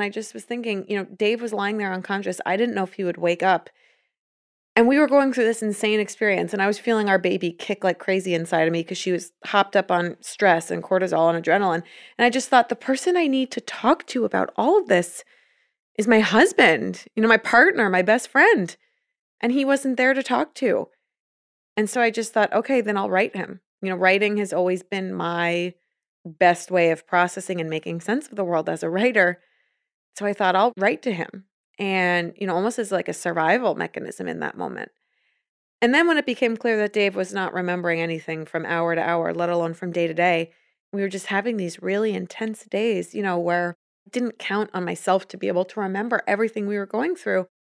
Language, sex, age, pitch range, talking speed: English, female, 20-39, 180-225 Hz, 225 wpm